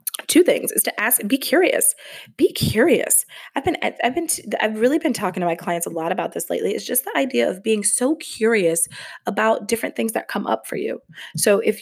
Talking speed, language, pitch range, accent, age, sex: 220 wpm, English, 185-255 Hz, American, 20-39, female